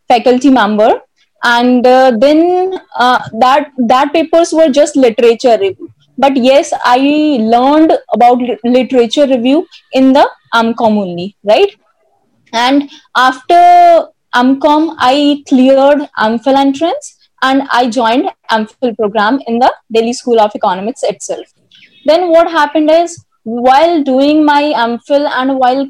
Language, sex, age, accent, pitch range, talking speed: Hindi, female, 20-39, native, 235-290 Hz, 125 wpm